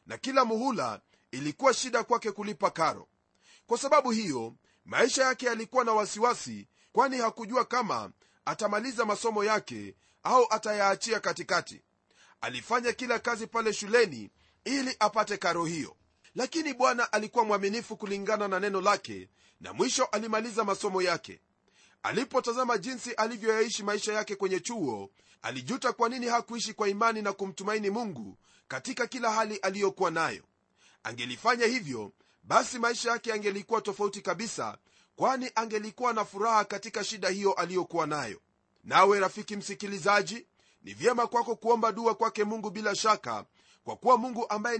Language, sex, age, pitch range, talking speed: Swahili, male, 40-59, 200-235 Hz, 135 wpm